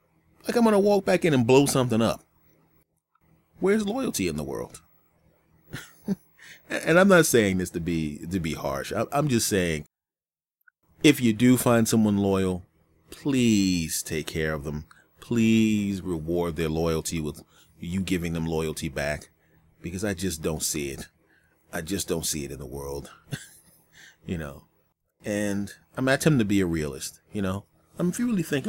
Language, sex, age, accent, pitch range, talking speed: English, male, 30-49, American, 80-120 Hz, 165 wpm